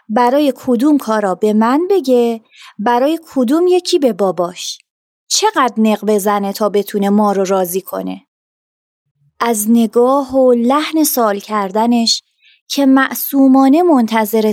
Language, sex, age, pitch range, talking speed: Persian, female, 20-39, 215-280 Hz, 120 wpm